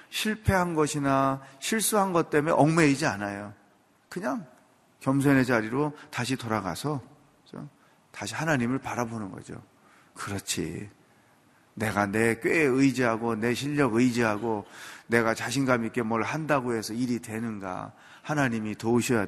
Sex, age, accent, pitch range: male, 40-59, native, 115-160 Hz